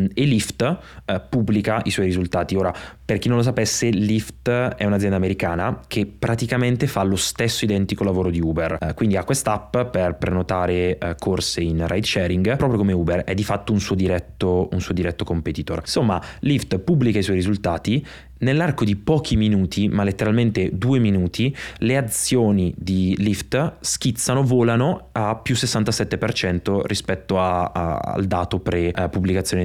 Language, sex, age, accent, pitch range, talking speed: Italian, male, 20-39, native, 90-115 Hz, 165 wpm